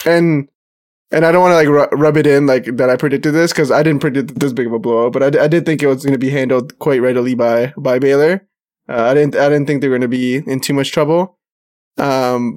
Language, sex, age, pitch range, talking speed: English, male, 20-39, 130-155 Hz, 270 wpm